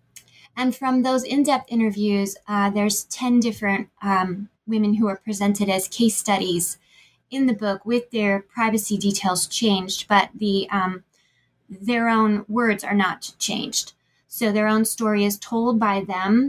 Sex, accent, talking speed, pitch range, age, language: female, American, 155 wpm, 195-230 Hz, 20-39, English